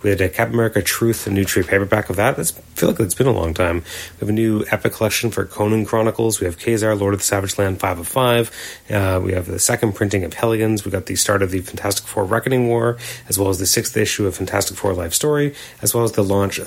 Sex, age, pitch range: male, 30-49, 95-115 Hz